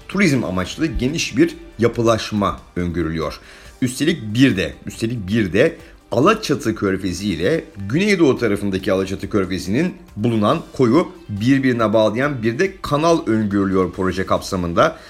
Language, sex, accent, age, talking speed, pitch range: Turkish, male, native, 50-69, 115 wpm, 95-135 Hz